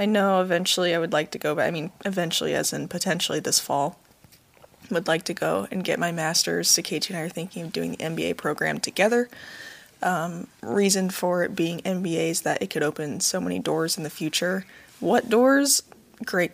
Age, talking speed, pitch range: 20-39, 205 wpm, 170-220 Hz